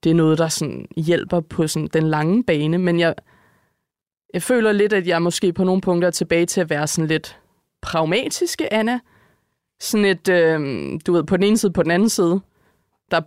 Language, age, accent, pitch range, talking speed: Danish, 20-39, native, 155-180 Hz, 210 wpm